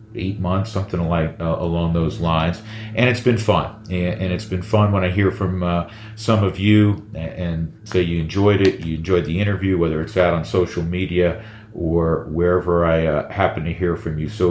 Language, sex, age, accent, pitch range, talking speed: English, male, 40-59, American, 90-110 Hz, 215 wpm